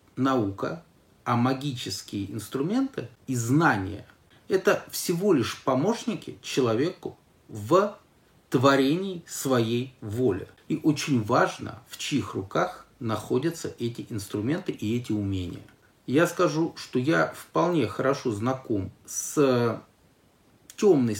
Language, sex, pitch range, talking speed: Russian, male, 105-140 Hz, 100 wpm